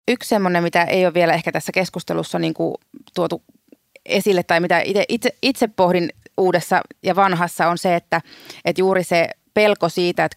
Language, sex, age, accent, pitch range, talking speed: Finnish, female, 30-49, native, 170-195 Hz, 160 wpm